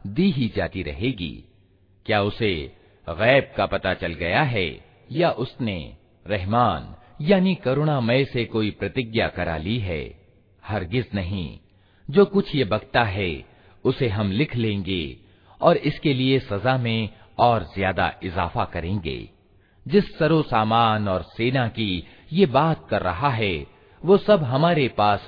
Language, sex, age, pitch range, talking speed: Hindi, male, 50-69, 95-135 Hz, 140 wpm